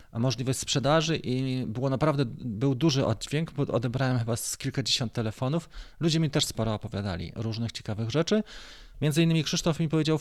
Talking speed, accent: 160 wpm, native